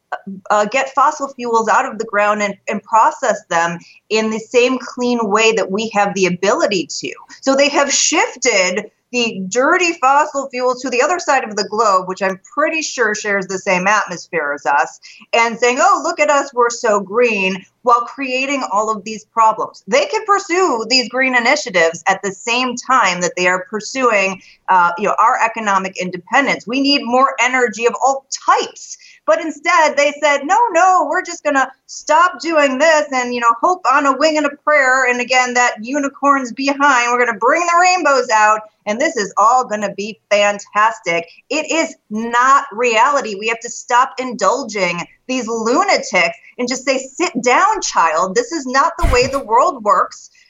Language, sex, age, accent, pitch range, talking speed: English, female, 30-49, American, 215-295 Hz, 185 wpm